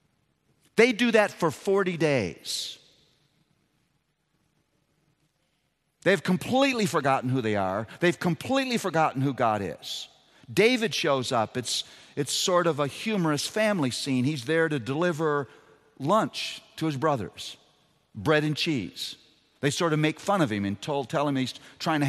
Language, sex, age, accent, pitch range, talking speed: English, male, 50-69, American, 145-210 Hz, 145 wpm